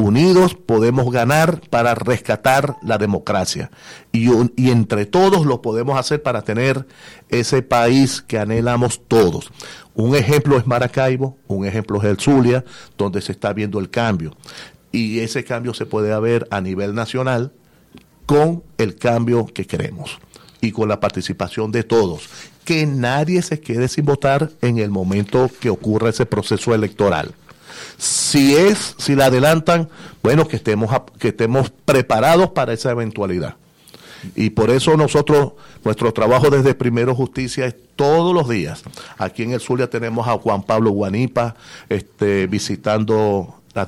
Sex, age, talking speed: male, 40-59, 150 wpm